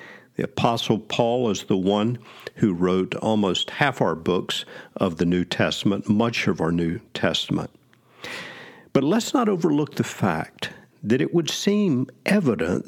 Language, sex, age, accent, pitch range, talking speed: English, male, 50-69, American, 95-125 Hz, 150 wpm